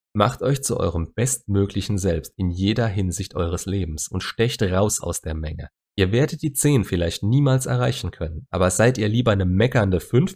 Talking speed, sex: 185 wpm, male